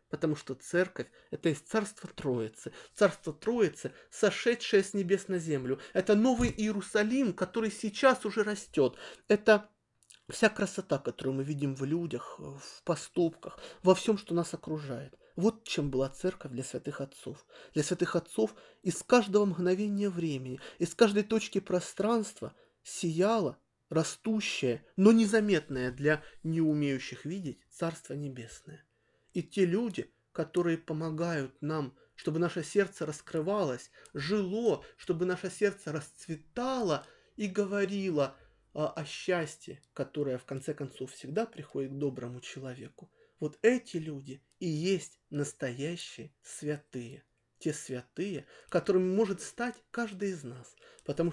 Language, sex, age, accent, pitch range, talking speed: Russian, male, 20-39, native, 145-205 Hz, 125 wpm